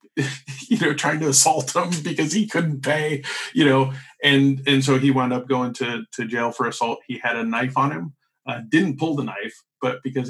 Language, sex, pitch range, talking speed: English, male, 125-145 Hz, 215 wpm